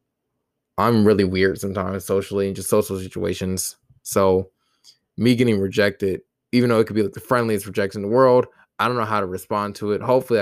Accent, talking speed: American, 195 wpm